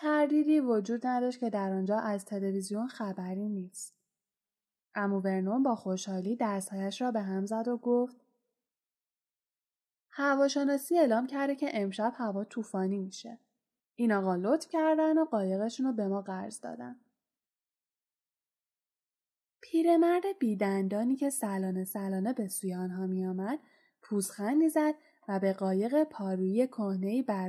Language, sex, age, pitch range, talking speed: Persian, female, 10-29, 200-265 Hz, 120 wpm